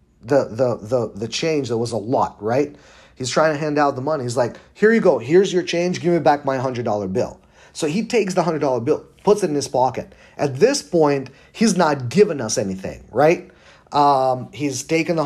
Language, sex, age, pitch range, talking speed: English, male, 40-59, 125-165 Hz, 225 wpm